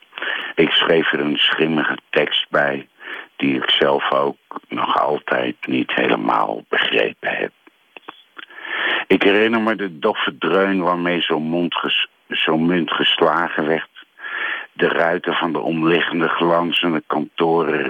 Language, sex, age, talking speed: Dutch, male, 60-79, 115 wpm